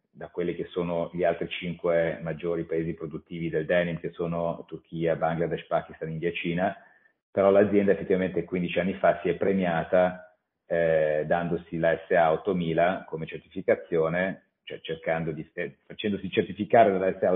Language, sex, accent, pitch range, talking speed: Italian, male, native, 85-95 Hz, 145 wpm